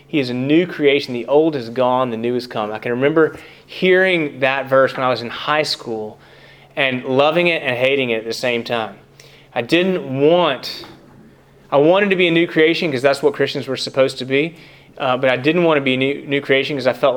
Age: 30-49